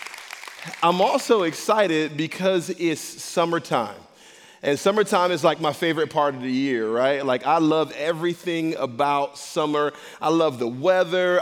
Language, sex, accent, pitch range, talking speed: English, male, American, 165-205 Hz, 140 wpm